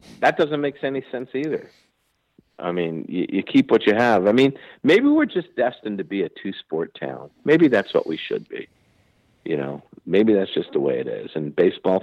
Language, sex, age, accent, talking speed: English, male, 50-69, American, 210 wpm